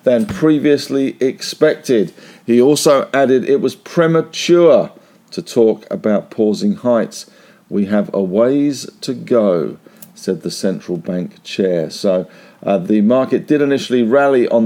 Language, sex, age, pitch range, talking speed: English, male, 50-69, 105-140 Hz, 135 wpm